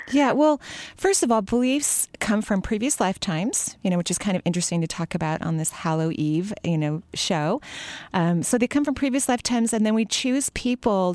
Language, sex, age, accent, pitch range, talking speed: English, female, 30-49, American, 160-215 Hz, 205 wpm